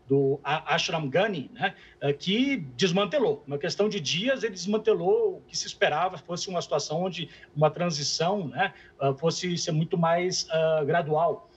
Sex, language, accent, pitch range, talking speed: male, Portuguese, Brazilian, 150-195 Hz, 150 wpm